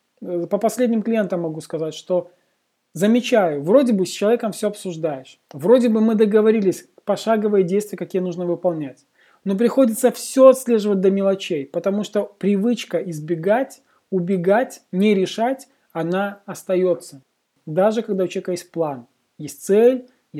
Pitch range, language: 175-230 Hz, Russian